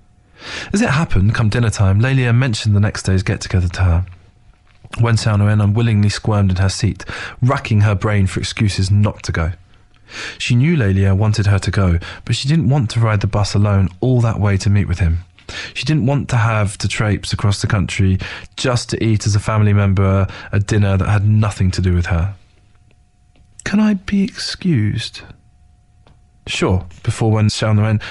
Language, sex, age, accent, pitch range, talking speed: English, male, 20-39, British, 95-115 Hz, 185 wpm